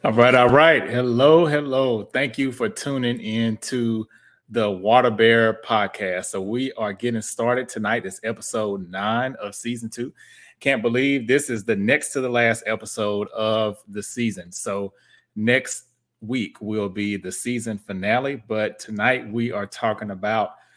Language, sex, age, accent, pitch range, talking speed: English, male, 30-49, American, 105-120 Hz, 160 wpm